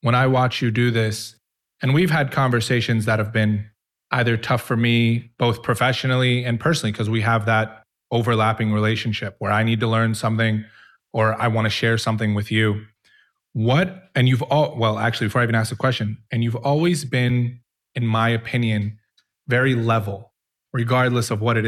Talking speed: 185 wpm